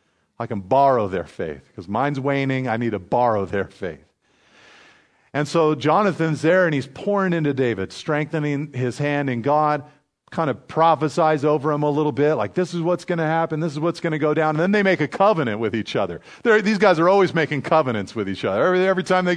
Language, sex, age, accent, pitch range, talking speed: English, male, 40-59, American, 120-170 Hz, 225 wpm